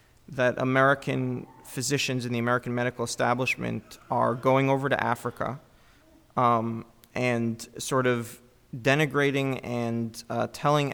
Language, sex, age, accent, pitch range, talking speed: English, male, 30-49, American, 120-140 Hz, 115 wpm